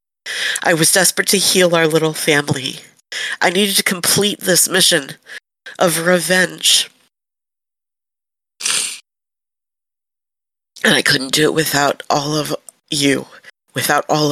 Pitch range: 155-185 Hz